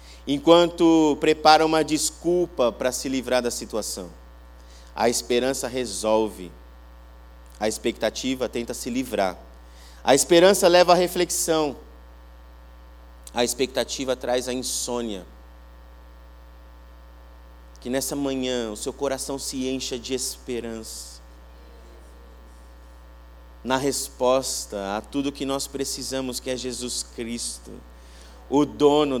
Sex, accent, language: male, Brazilian, Portuguese